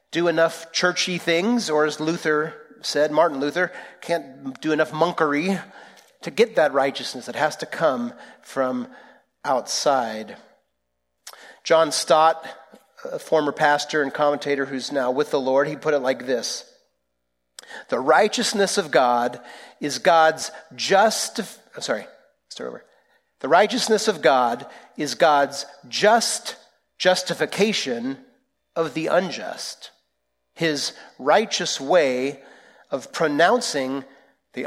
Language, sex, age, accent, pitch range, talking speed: English, male, 40-59, American, 130-180 Hz, 120 wpm